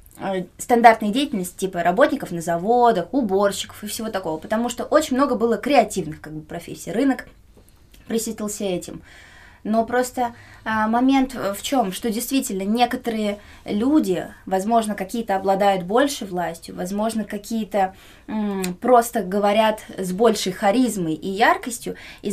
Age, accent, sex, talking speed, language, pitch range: 20-39, native, female, 120 wpm, Russian, 185-235 Hz